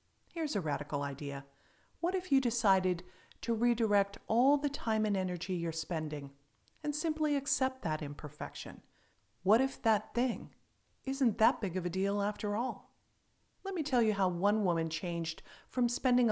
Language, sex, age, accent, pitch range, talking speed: English, female, 40-59, American, 160-235 Hz, 160 wpm